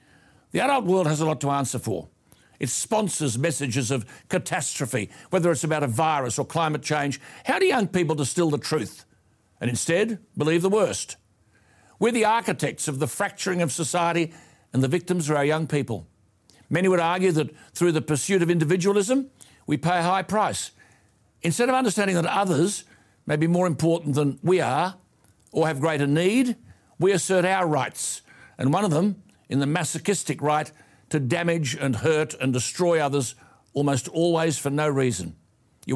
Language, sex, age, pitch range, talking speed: English, male, 60-79, 135-175 Hz, 175 wpm